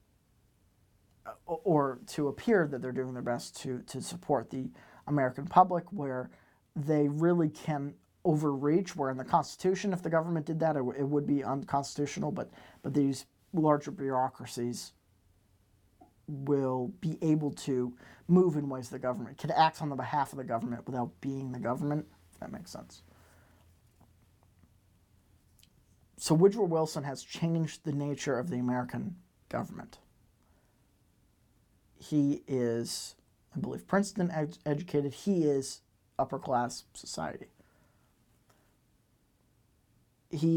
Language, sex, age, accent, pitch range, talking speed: English, male, 40-59, American, 120-160 Hz, 130 wpm